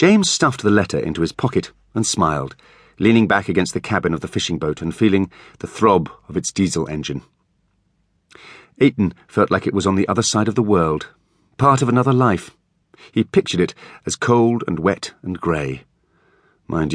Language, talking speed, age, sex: English, 185 wpm, 40-59, male